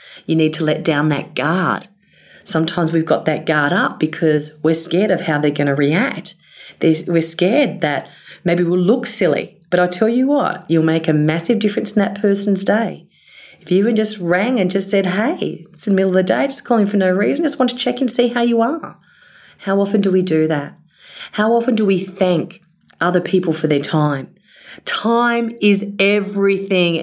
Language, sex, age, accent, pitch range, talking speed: English, female, 40-59, Australian, 170-220 Hz, 200 wpm